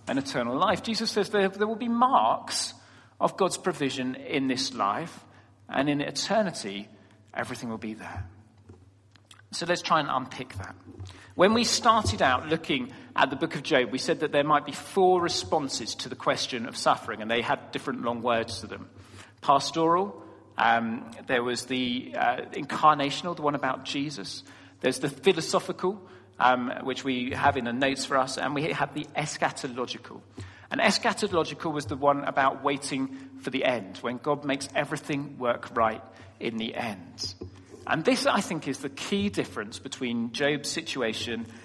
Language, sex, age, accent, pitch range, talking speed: English, male, 40-59, British, 115-155 Hz, 170 wpm